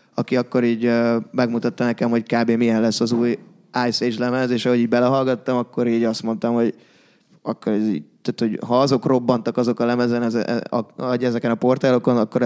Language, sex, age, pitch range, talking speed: English, male, 20-39, 120-135 Hz, 185 wpm